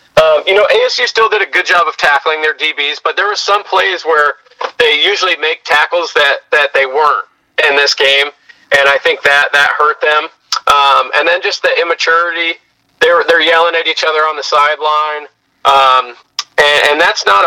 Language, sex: English, male